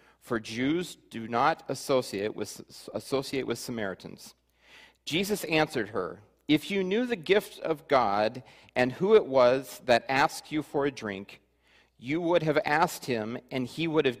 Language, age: English, 40-59